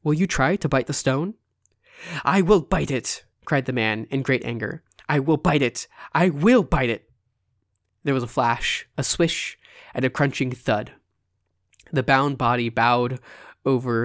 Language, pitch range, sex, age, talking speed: English, 115-140 Hz, male, 20-39, 170 wpm